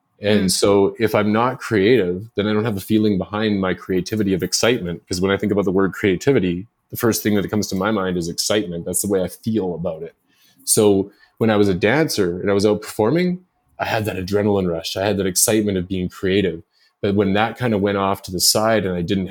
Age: 30-49